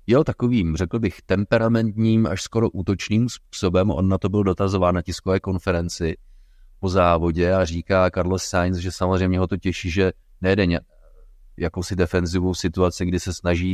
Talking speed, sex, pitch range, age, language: 155 wpm, male, 85-100 Hz, 30-49, Czech